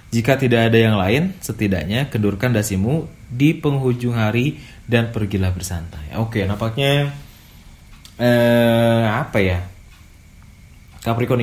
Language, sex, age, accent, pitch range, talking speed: Indonesian, male, 20-39, native, 95-120 Hz, 110 wpm